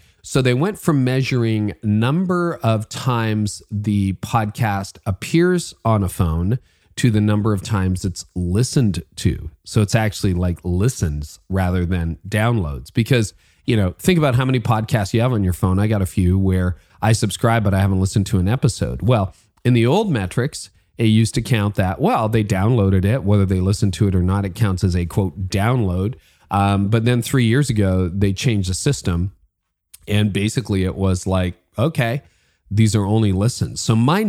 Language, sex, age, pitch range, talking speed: English, male, 40-59, 95-115 Hz, 185 wpm